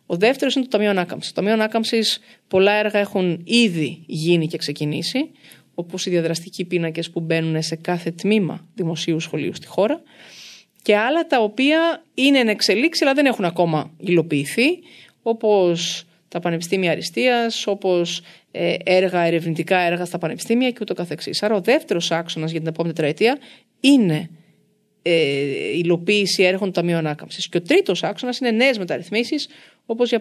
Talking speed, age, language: 150 wpm, 30-49, Greek